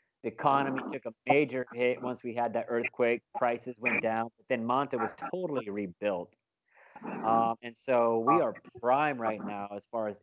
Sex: male